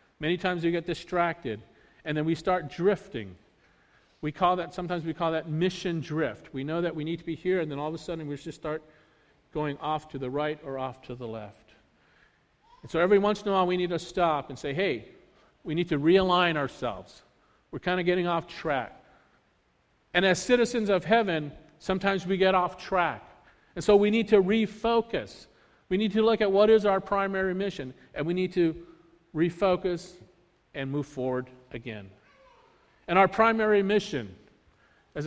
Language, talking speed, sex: English, 190 wpm, male